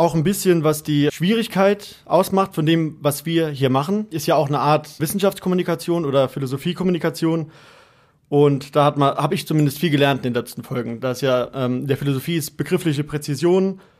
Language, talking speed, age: German, 175 wpm, 30-49